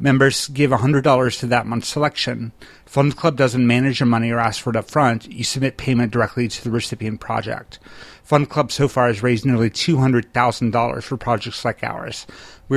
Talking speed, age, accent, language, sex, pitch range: 190 wpm, 30-49, American, English, male, 115-135 Hz